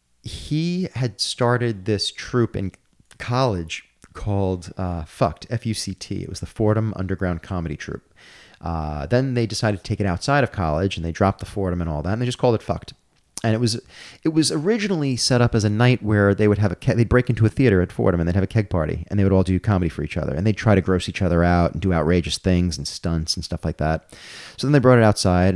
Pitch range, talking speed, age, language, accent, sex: 85-110 Hz, 245 wpm, 30-49, English, American, male